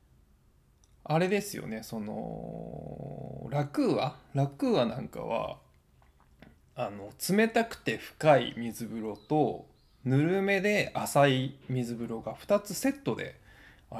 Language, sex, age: Japanese, male, 20-39